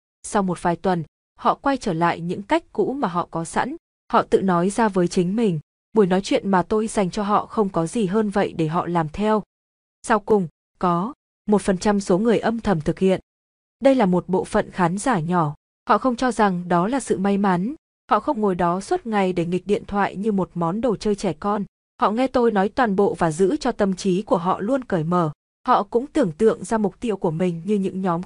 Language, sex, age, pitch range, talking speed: Vietnamese, female, 20-39, 185-225 Hz, 240 wpm